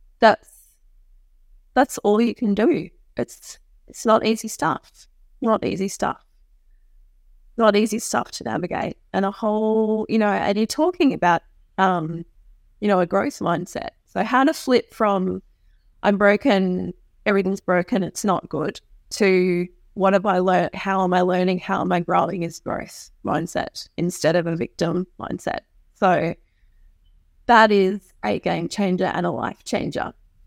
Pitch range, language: 180-215 Hz, English